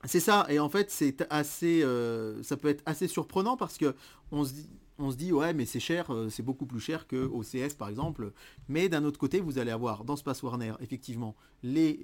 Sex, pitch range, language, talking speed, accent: male, 120-155 Hz, French, 210 wpm, French